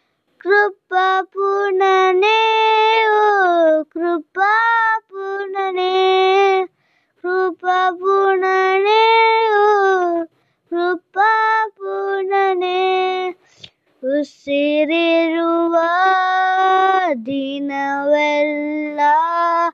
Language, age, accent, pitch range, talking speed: English, 20-39, Indian, 260-360 Hz, 45 wpm